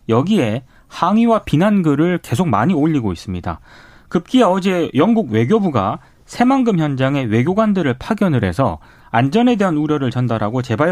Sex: male